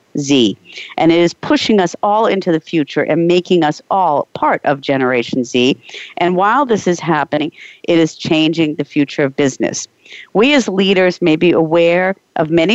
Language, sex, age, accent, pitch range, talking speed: English, female, 50-69, American, 155-200 Hz, 180 wpm